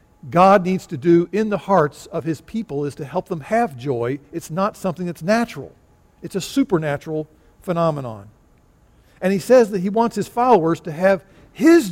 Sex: male